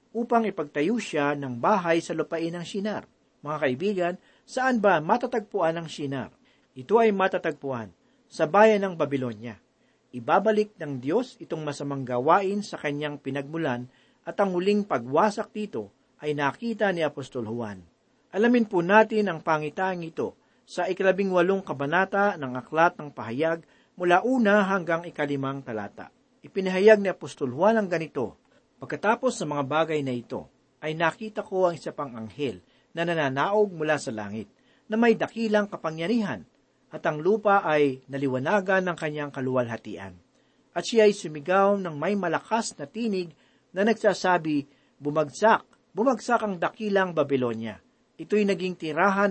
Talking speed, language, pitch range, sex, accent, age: 140 wpm, Filipino, 145-205 Hz, male, native, 50-69